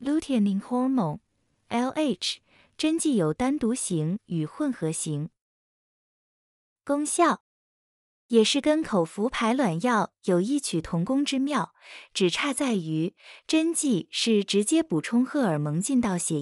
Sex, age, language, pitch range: female, 20-39, Chinese, 175-275 Hz